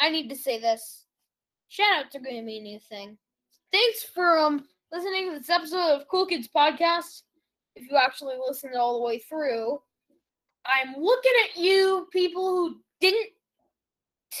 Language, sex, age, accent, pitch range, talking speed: English, female, 10-29, American, 240-340 Hz, 165 wpm